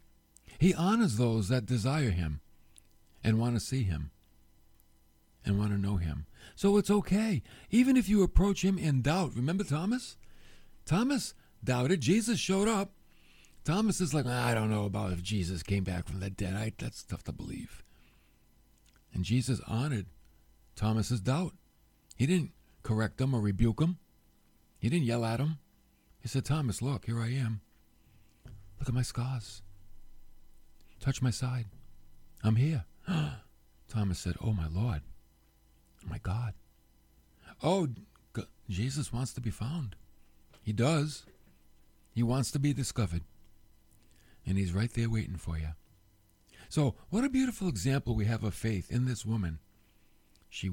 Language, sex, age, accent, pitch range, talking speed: English, male, 50-69, American, 95-135 Hz, 150 wpm